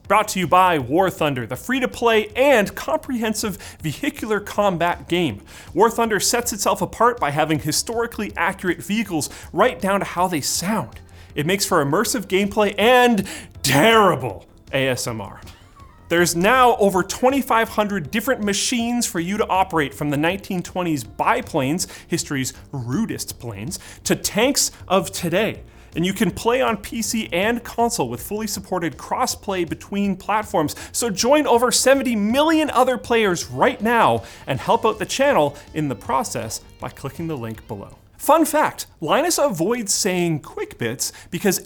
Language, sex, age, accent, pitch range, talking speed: English, male, 30-49, American, 150-230 Hz, 145 wpm